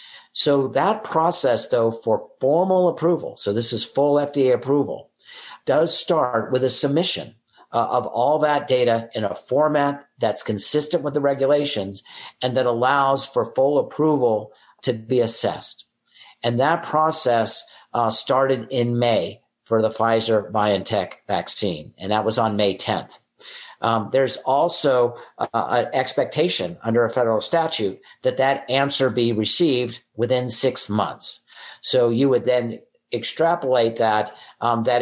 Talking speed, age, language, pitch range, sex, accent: 135 wpm, 50-69, English, 115-140 Hz, male, American